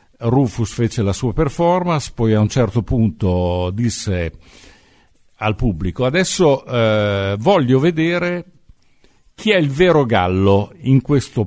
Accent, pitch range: native, 100-145 Hz